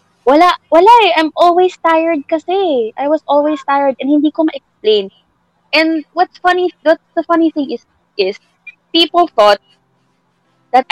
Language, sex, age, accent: Filipino, female, 20-39, native